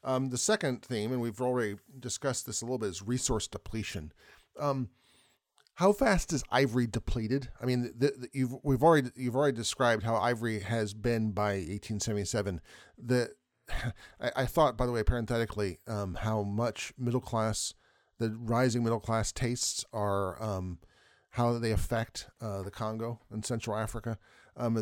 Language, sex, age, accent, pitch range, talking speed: English, male, 40-59, American, 105-125 Hz, 160 wpm